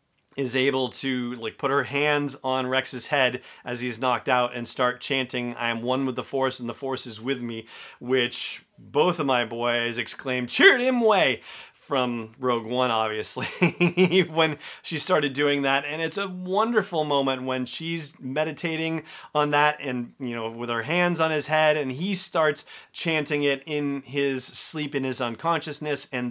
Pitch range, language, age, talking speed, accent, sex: 125-160 Hz, English, 30-49, 180 wpm, American, male